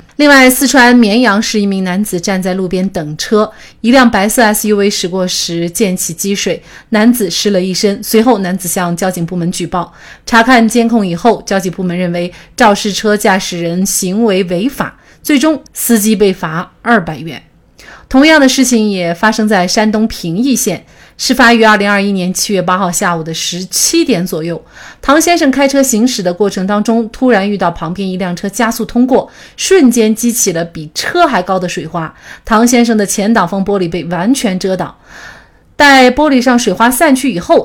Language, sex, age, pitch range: Chinese, female, 30-49, 180-240 Hz